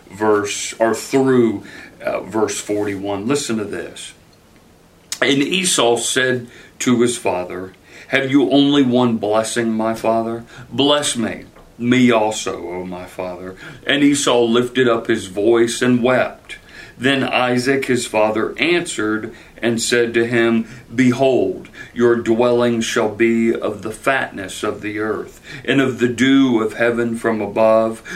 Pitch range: 105-125 Hz